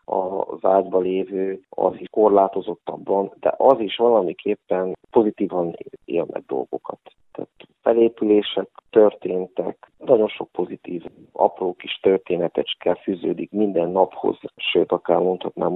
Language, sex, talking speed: Hungarian, male, 105 wpm